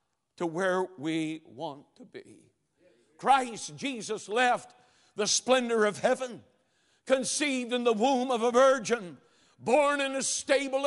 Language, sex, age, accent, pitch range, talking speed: English, male, 60-79, American, 200-265 Hz, 135 wpm